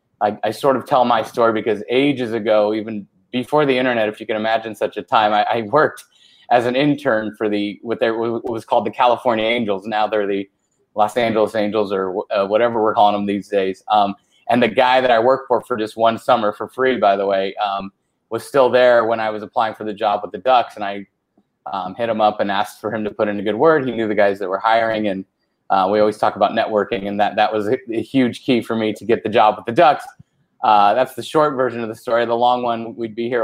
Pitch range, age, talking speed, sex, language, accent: 105-125 Hz, 20-39, 255 wpm, male, English, American